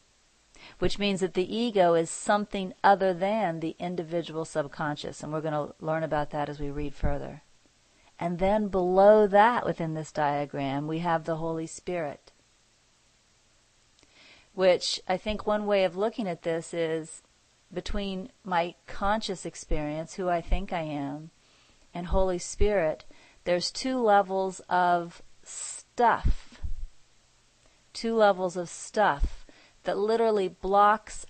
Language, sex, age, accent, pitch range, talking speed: English, female, 40-59, American, 160-190 Hz, 130 wpm